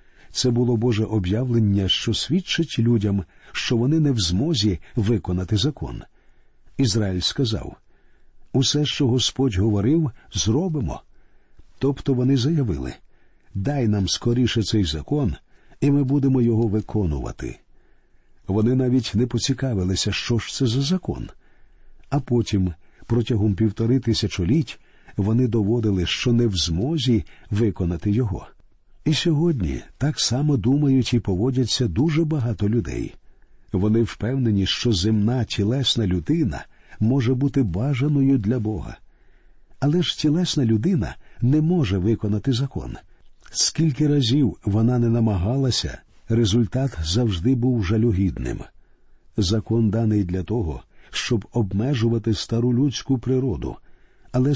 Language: Ukrainian